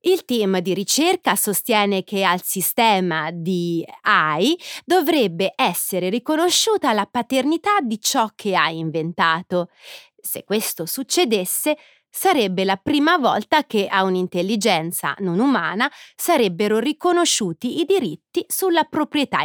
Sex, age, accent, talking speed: female, 30-49, native, 115 wpm